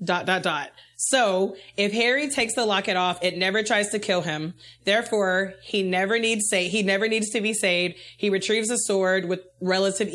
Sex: female